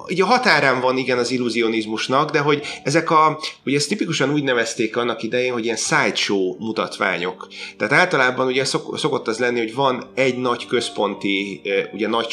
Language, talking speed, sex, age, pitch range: Hungarian, 165 wpm, male, 30-49, 115-150 Hz